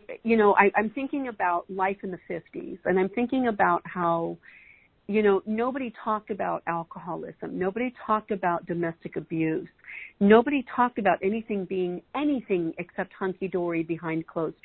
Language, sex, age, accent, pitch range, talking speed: English, female, 50-69, American, 175-215 Hz, 145 wpm